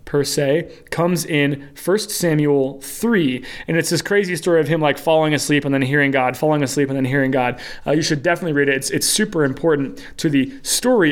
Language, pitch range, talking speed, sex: English, 135-175 Hz, 215 wpm, male